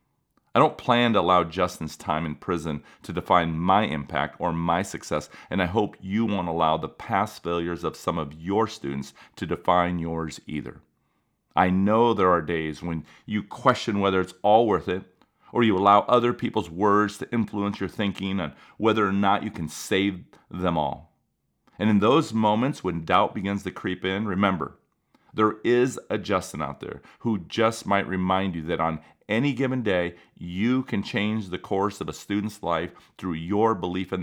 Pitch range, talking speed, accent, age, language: 85-105 Hz, 185 wpm, American, 40-59, English